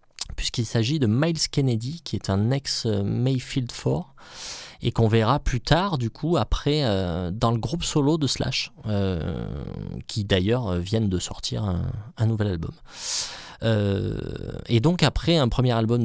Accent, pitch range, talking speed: French, 100-130 Hz, 160 wpm